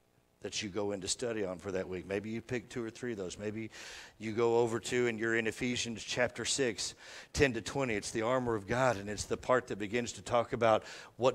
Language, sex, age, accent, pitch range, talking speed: English, male, 50-69, American, 90-120 Hz, 245 wpm